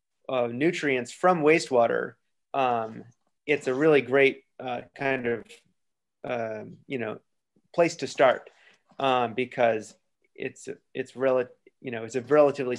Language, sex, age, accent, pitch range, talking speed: English, male, 30-49, American, 120-135 Hz, 135 wpm